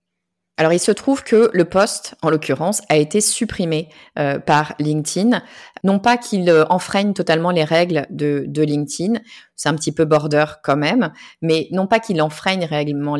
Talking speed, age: 175 wpm, 30-49